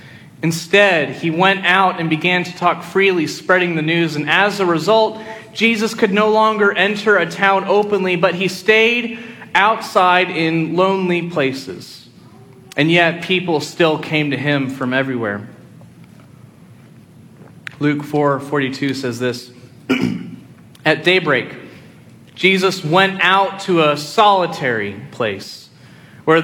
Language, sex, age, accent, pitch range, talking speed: English, male, 30-49, American, 145-205 Hz, 125 wpm